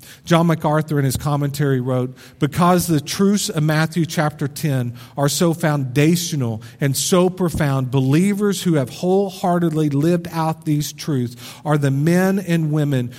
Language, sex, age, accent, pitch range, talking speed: English, male, 40-59, American, 130-170 Hz, 145 wpm